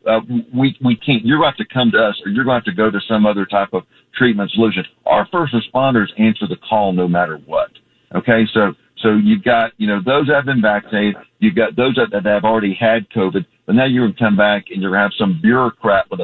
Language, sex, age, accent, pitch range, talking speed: English, male, 50-69, American, 105-120 Hz, 260 wpm